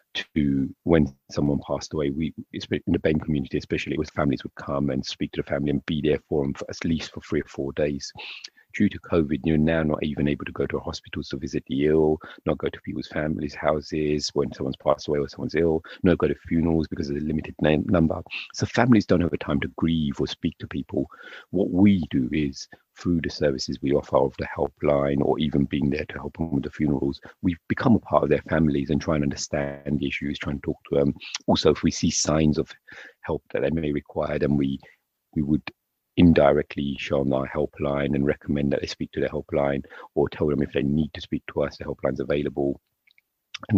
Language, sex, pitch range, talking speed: English, male, 70-80 Hz, 230 wpm